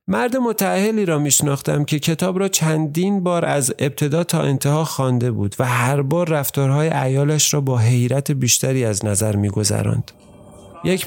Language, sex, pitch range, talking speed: Persian, male, 125-165 Hz, 155 wpm